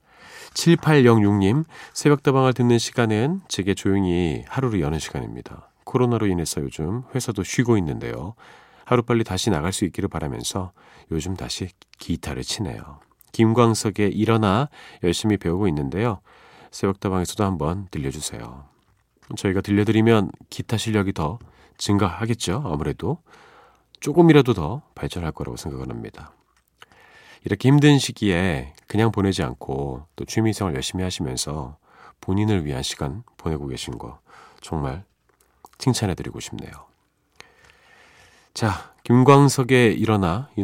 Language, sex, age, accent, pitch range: Korean, male, 40-59, native, 85-120 Hz